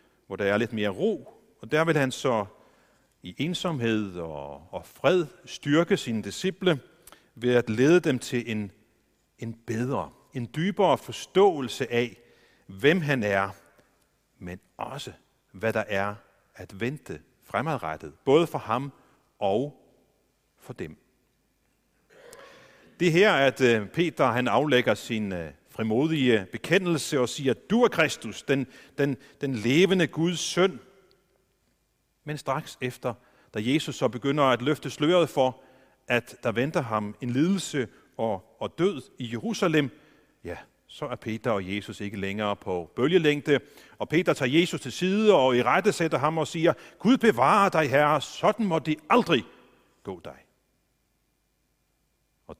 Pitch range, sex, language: 110-160 Hz, male, Danish